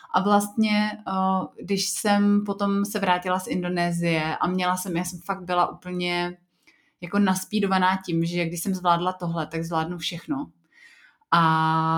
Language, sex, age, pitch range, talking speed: Slovak, female, 30-49, 175-210 Hz, 145 wpm